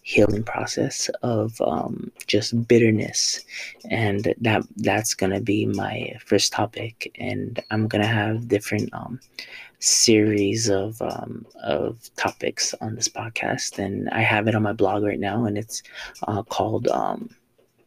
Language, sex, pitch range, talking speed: English, male, 100-115 Hz, 140 wpm